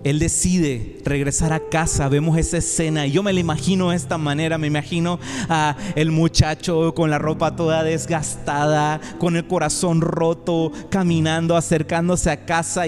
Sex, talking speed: male, 160 wpm